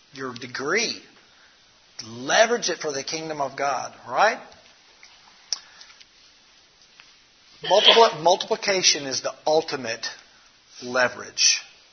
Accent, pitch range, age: American, 130-185 Hz, 50-69